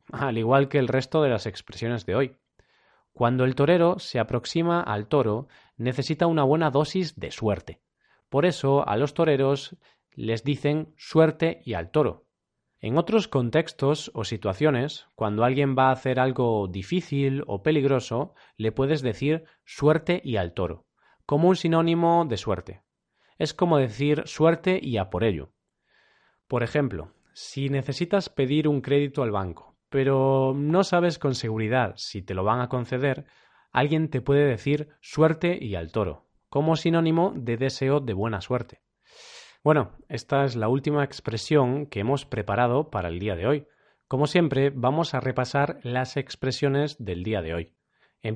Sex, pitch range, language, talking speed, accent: male, 115-150 Hz, Spanish, 160 wpm, Spanish